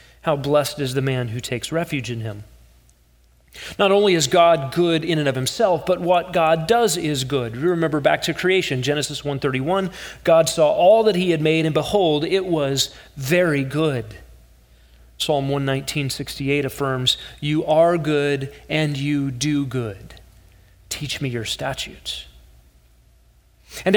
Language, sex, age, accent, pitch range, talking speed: English, male, 40-59, American, 135-180 Hz, 150 wpm